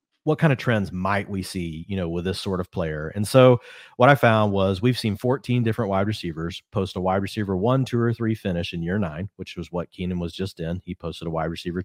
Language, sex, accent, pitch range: English, male, American, 90-110 Hz